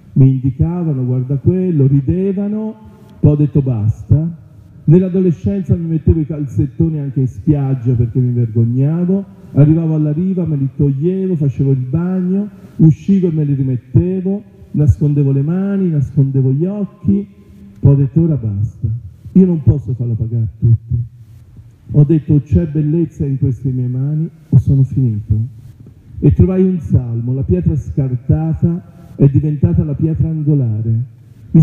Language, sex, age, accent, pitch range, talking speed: Italian, male, 40-59, native, 120-155 Hz, 145 wpm